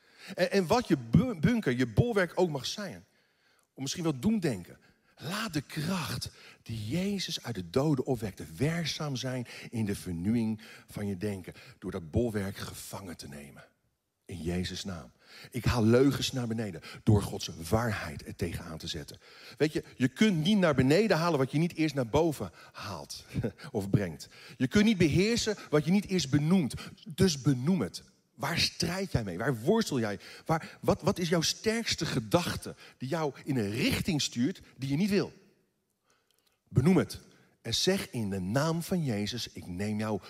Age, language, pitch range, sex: 50-69, Dutch, 105-170 Hz, male